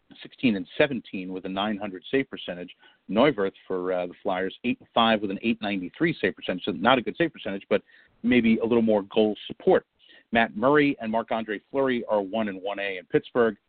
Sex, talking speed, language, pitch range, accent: male, 200 wpm, English, 100-125 Hz, American